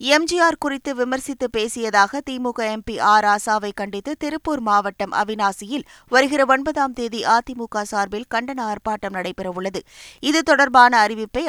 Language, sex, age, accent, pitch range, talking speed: Tamil, female, 20-39, native, 210-265 Hz, 120 wpm